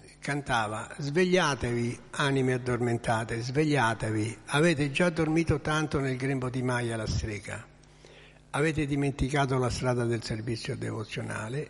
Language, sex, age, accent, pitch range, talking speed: Italian, male, 60-79, native, 115-140 Hz, 115 wpm